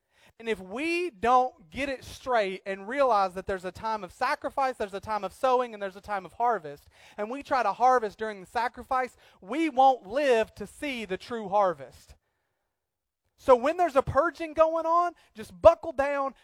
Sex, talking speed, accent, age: male, 190 wpm, American, 30-49